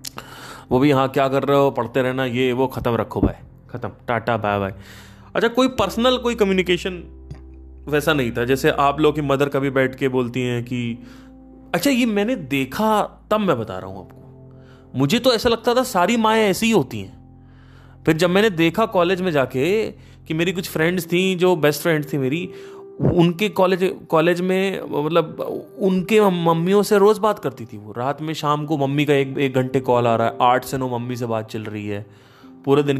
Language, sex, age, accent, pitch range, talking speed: Hindi, male, 20-39, native, 115-180 Hz, 205 wpm